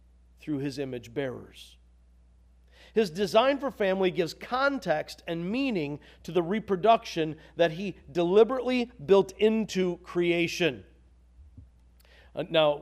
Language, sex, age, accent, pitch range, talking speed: English, male, 40-59, American, 135-215 Hz, 105 wpm